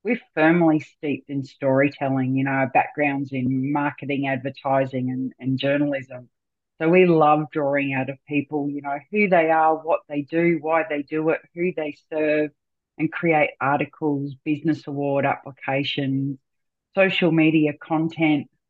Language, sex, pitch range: English, female, 140-170 Hz